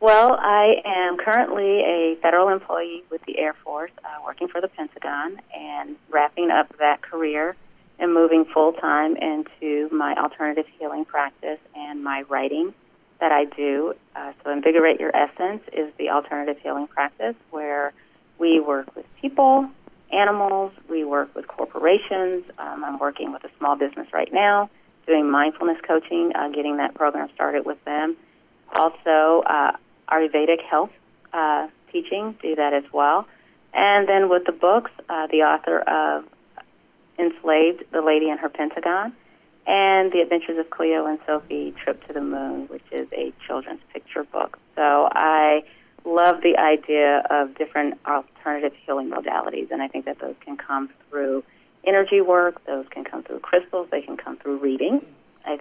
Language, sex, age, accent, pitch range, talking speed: English, female, 30-49, American, 145-175 Hz, 160 wpm